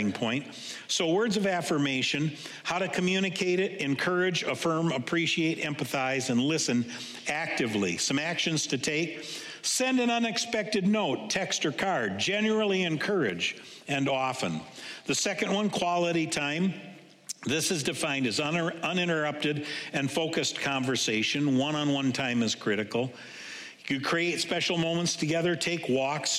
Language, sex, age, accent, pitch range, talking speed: English, male, 60-79, American, 140-180 Hz, 125 wpm